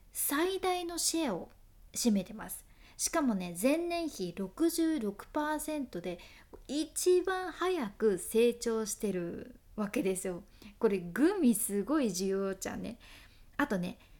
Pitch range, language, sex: 205-300 Hz, Japanese, female